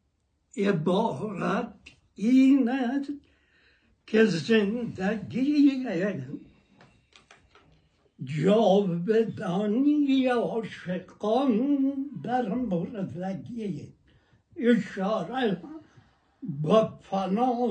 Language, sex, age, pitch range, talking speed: Persian, male, 60-79, 160-230 Hz, 40 wpm